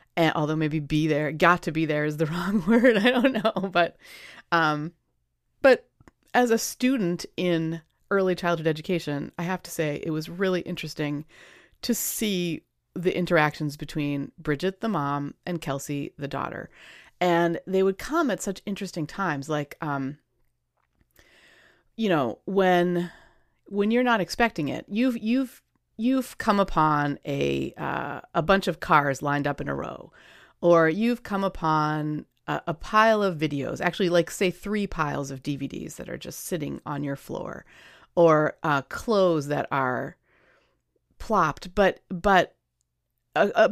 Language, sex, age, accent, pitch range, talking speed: English, female, 30-49, American, 150-195 Hz, 155 wpm